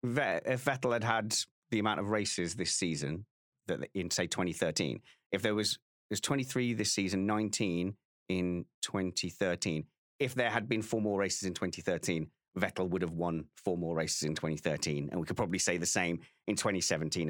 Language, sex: English, male